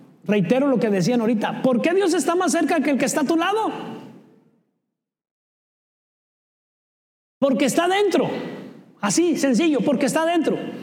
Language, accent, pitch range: Spanish, Mexican, 260-340 Hz